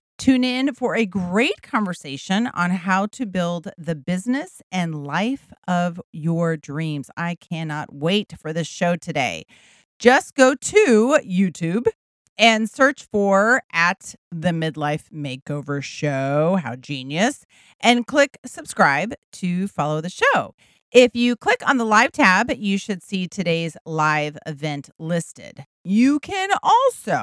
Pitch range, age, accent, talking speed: 165-240 Hz, 40-59, American, 135 wpm